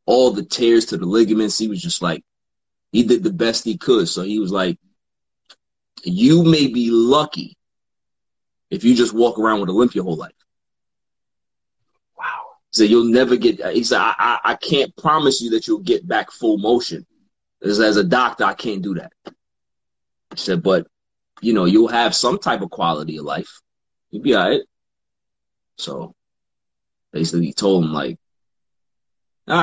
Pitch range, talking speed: 100-135 Hz, 175 wpm